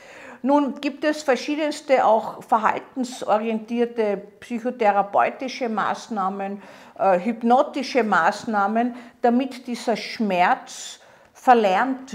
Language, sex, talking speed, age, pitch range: German, female, 70 wpm, 50-69, 200-265 Hz